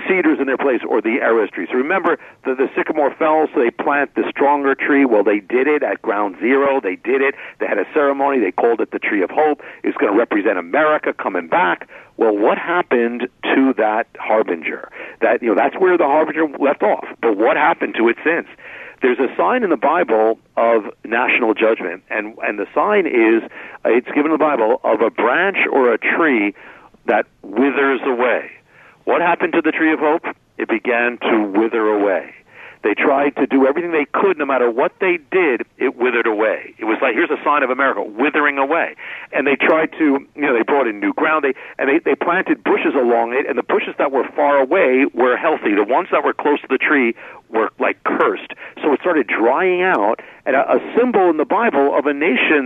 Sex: male